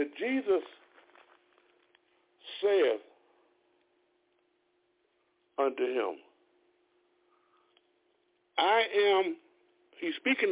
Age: 60-79